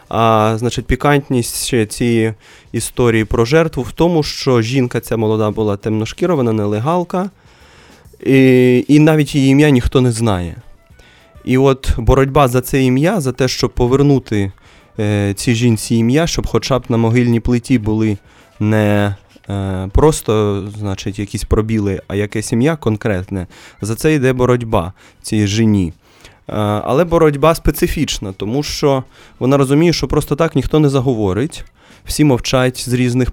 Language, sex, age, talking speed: Russian, male, 20-39, 140 wpm